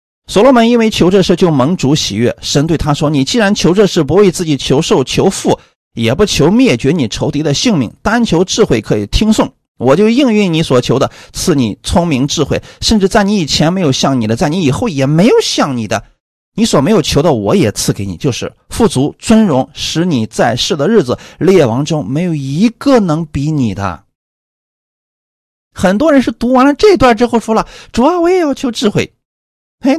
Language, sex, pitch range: Chinese, male, 140-225 Hz